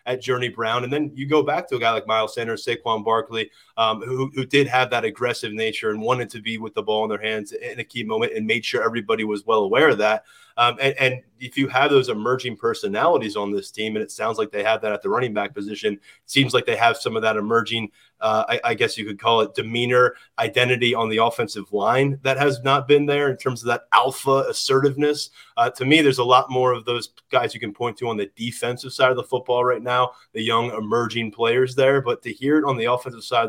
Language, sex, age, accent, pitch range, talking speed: English, male, 30-49, American, 115-135 Hz, 255 wpm